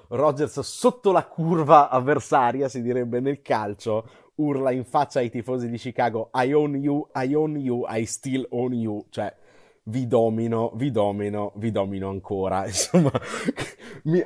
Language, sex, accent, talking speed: Italian, male, native, 150 wpm